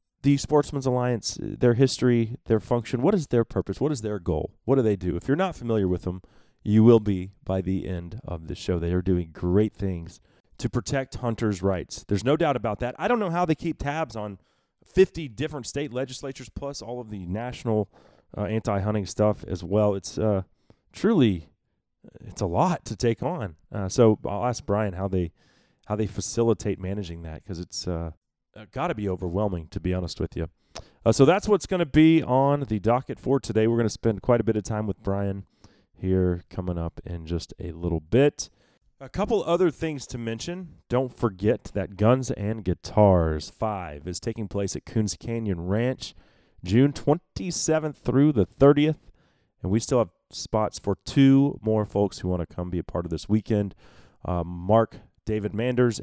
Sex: male